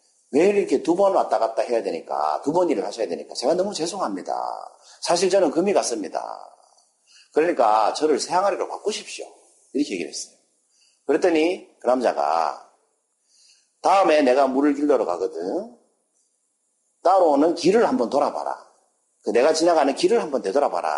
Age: 40-59